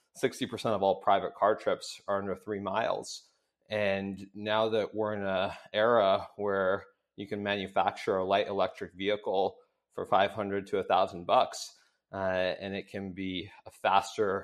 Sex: male